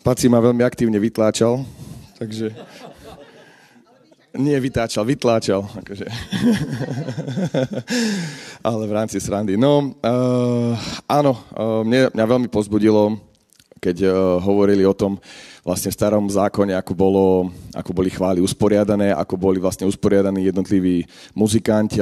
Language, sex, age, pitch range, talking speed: Slovak, male, 30-49, 105-130 Hz, 115 wpm